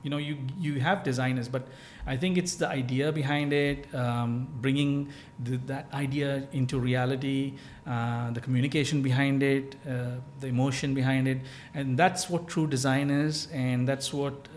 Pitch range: 130-150 Hz